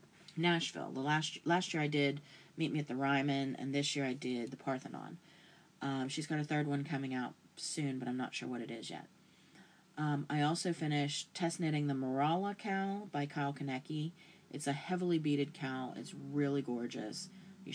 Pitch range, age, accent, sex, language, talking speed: 140-170 Hz, 30-49, American, female, English, 195 wpm